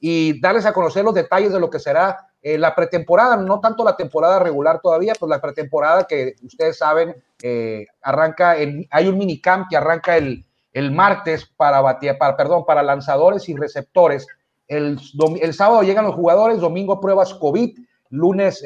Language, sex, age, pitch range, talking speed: Spanish, male, 40-59, 150-195 Hz, 175 wpm